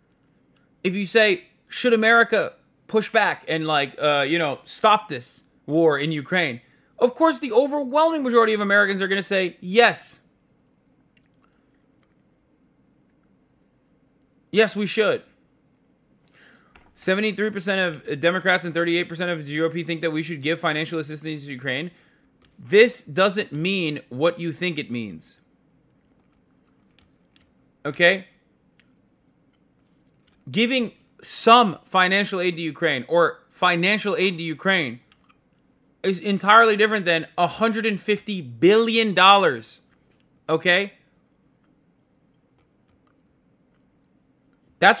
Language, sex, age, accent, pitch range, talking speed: English, male, 30-49, American, 160-215 Hz, 105 wpm